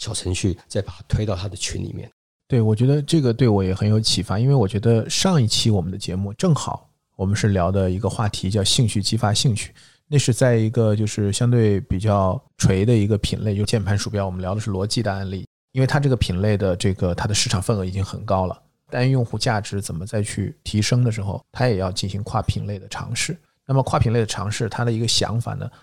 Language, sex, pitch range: Chinese, male, 100-125 Hz